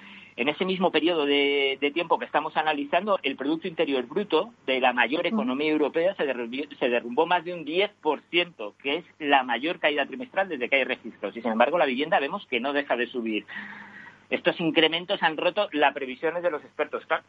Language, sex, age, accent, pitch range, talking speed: Spanish, male, 50-69, Spanish, 130-160 Hz, 200 wpm